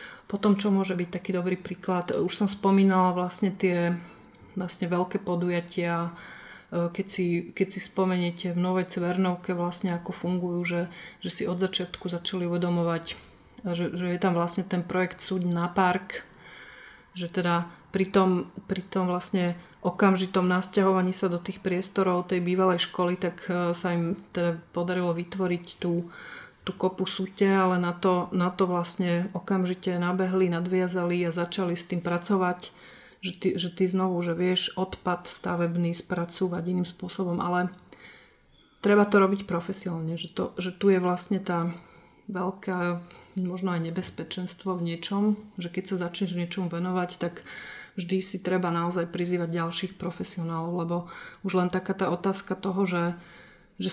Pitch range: 175-190 Hz